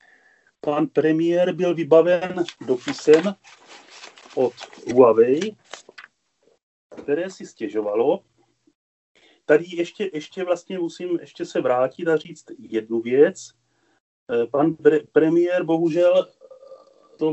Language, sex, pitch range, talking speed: Czech, male, 145-175 Hz, 95 wpm